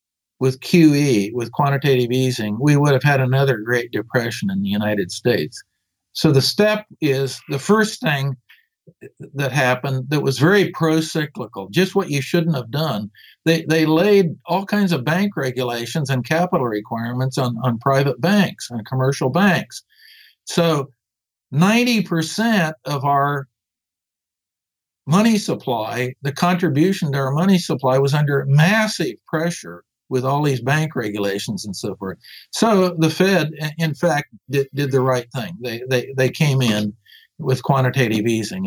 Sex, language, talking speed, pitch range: male, English, 145 wpm, 125-165 Hz